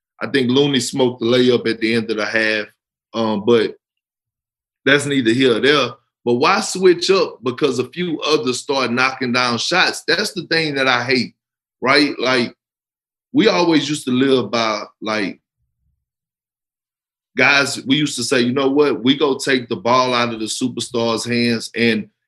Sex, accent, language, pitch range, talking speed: male, American, English, 115-145 Hz, 175 wpm